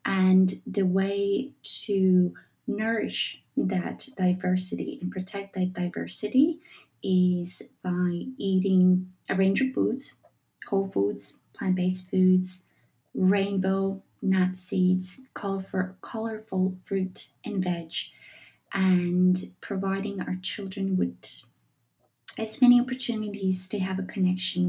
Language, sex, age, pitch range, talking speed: English, female, 20-39, 185-215 Hz, 100 wpm